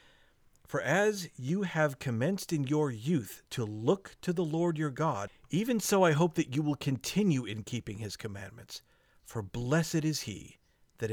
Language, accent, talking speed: English, American, 175 wpm